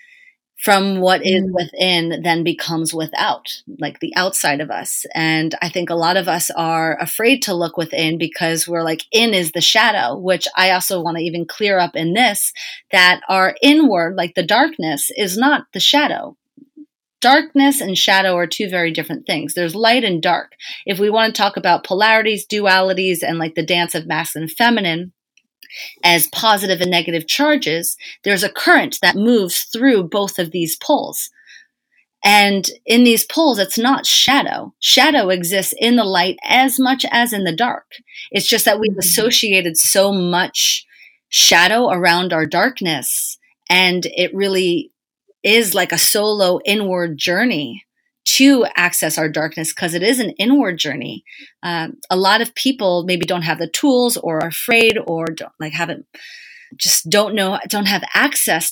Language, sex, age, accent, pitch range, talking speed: English, female, 30-49, American, 170-230 Hz, 170 wpm